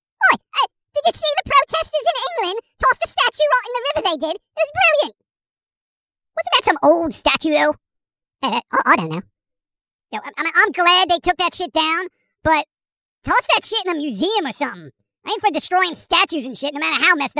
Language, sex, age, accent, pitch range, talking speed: English, male, 40-59, American, 300-380 Hz, 195 wpm